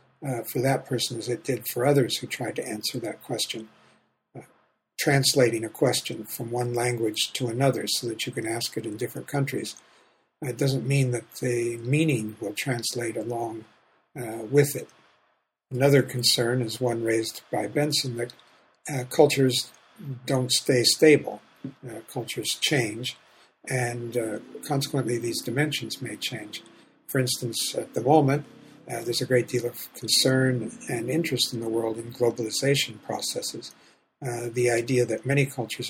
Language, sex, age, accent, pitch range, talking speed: English, male, 60-79, American, 115-135 Hz, 155 wpm